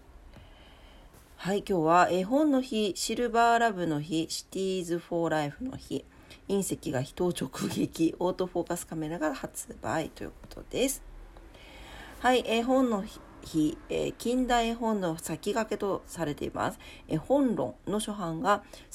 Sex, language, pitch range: female, Japanese, 155-230 Hz